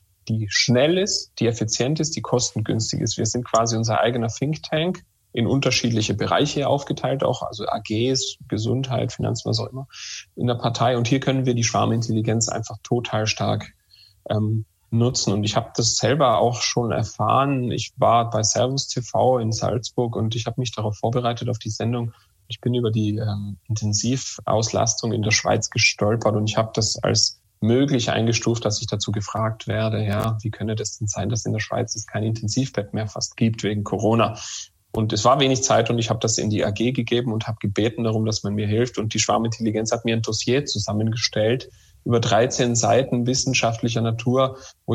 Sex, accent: male, German